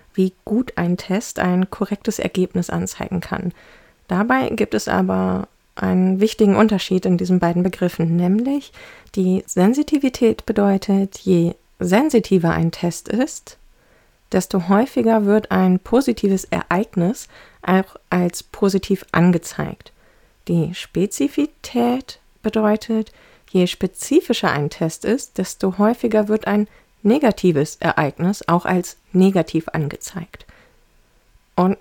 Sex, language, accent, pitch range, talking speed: female, German, German, 180-220 Hz, 110 wpm